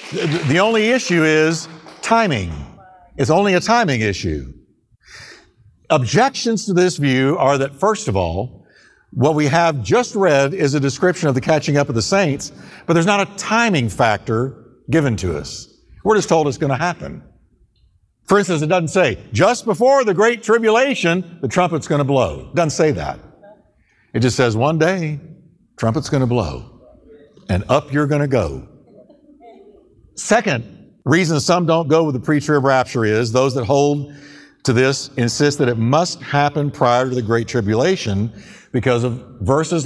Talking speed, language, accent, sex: 170 wpm, English, American, male